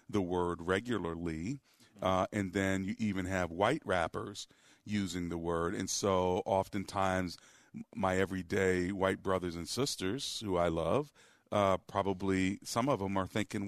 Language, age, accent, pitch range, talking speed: English, 40-59, American, 95-115 Hz, 145 wpm